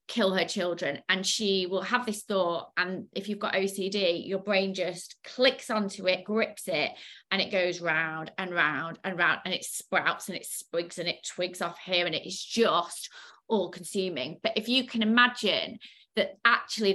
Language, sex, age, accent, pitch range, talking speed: English, female, 20-39, British, 185-225 Hz, 190 wpm